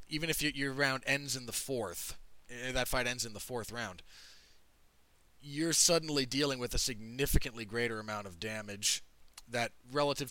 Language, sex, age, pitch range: English, male, 20-39, 100-145 Hz